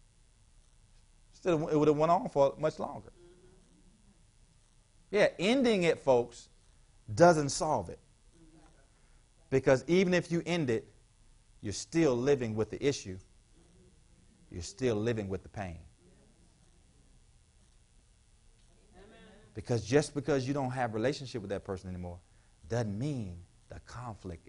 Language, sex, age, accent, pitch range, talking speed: English, male, 40-59, American, 100-145 Hz, 120 wpm